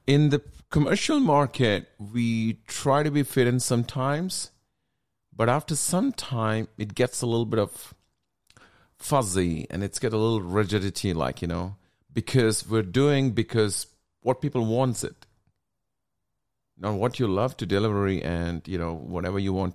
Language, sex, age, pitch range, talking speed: English, male, 40-59, 95-130 Hz, 155 wpm